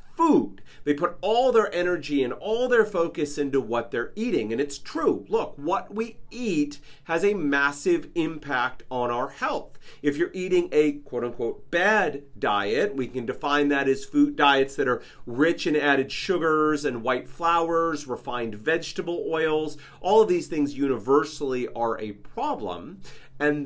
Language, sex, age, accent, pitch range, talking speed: English, male, 40-59, American, 135-180 Hz, 160 wpm